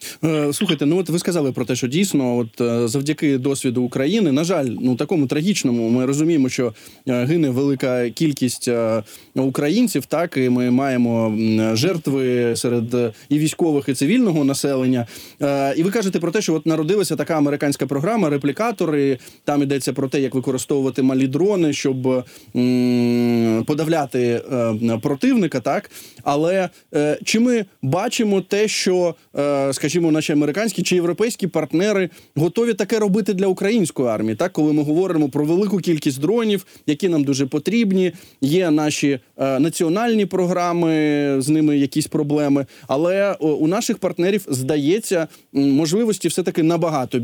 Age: 20-39